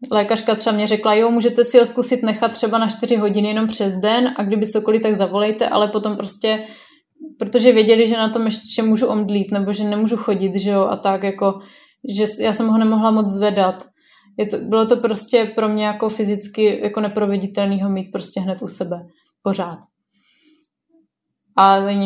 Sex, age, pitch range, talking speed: female, 20-39, 205-230 Hz, 185 wpm